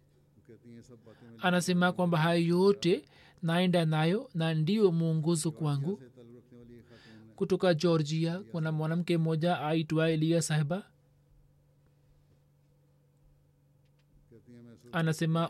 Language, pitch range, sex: Swahili, 150-180 Hz, male